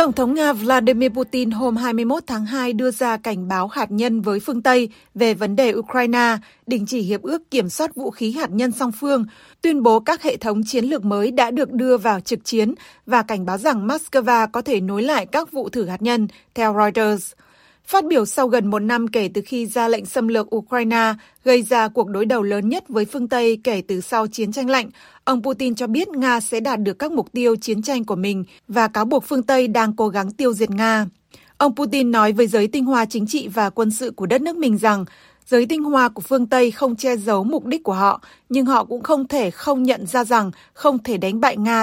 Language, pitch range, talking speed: Vietnamese, 215-265 Hz, 235 wpm